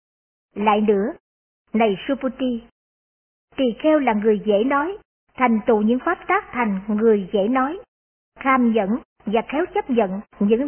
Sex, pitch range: male, 215-275 Hz